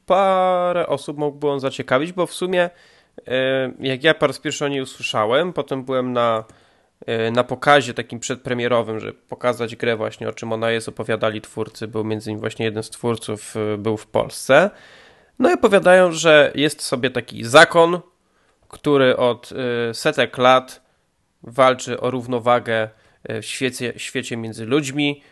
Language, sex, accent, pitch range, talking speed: Polish, male, native, 120-150 Hz, 150 wpm